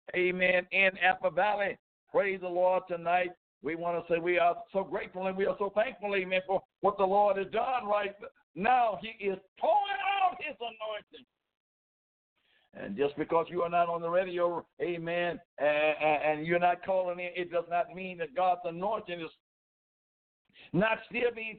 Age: 60-79